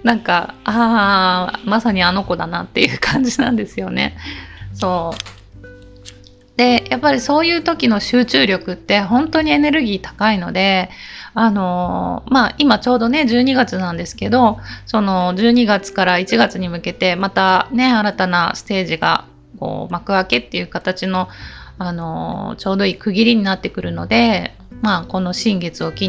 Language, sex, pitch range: Japanese, female, 175-235 Hz